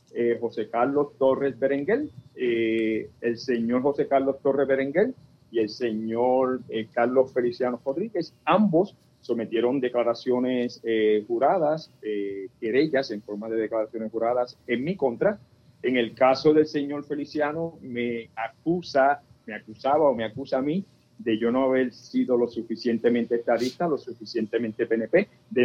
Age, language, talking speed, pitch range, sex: 50-69, Spanish, 145 wpm, 120-145 Hz, male